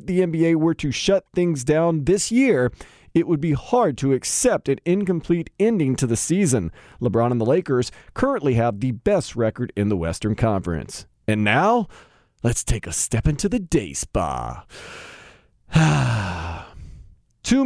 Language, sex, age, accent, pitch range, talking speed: English, male, 40-59, American, 130-205 Hz, 155 wpm